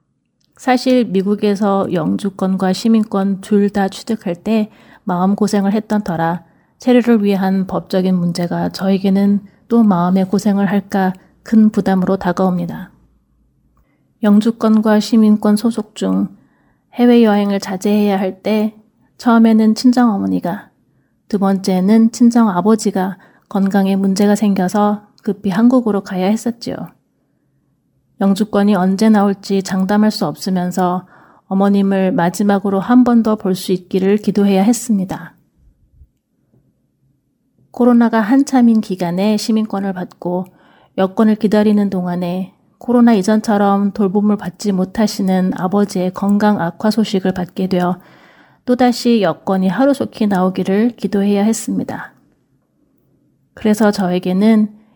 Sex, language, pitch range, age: female, Korean, 190-220 Hz, 30-49